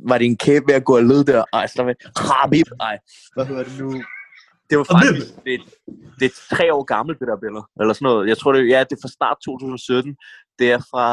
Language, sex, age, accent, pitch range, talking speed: Danish, male, 20-39, native, 115-145 Hz, 230 wpm